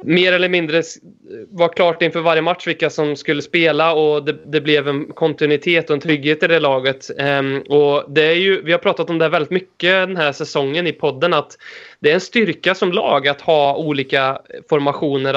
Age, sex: 20-39, male